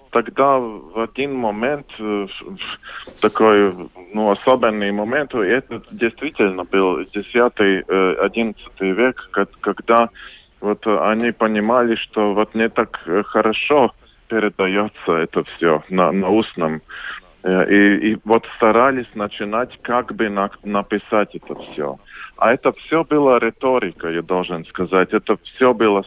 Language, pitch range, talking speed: Russian, 100-120 Hz, 115 wpm